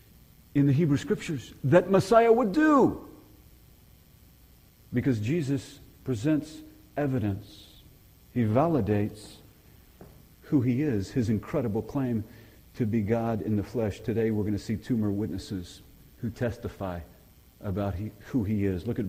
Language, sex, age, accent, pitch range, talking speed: English, male, 50-69, American, 105-145 Hz, 130 wpm